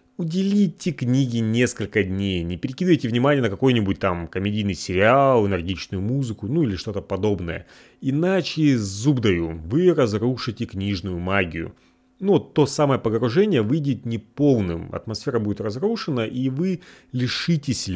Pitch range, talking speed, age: 100-150 Hz, 125 wpm, 30-49